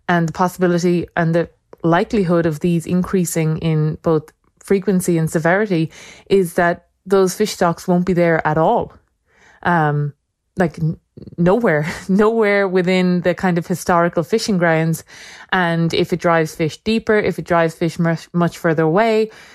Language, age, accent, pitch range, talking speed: English, 20-39, Irish, 165-190 Hz, 150 wpm